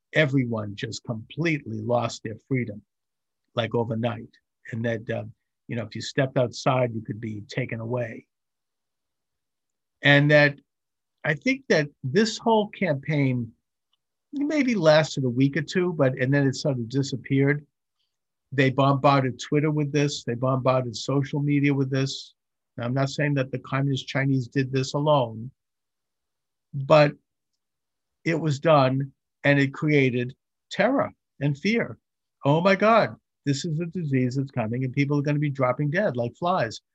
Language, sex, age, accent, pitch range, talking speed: English, male, 50-69, American, 120-150 Hz, 150 wpm